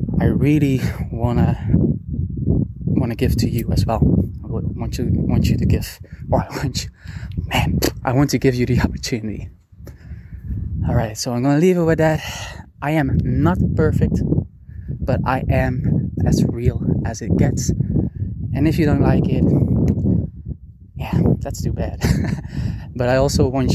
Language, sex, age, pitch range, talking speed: English, male, 20-39, 115-140 Hz, 155 wpm